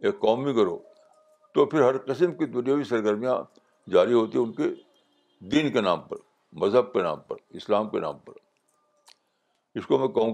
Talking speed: 180 wpm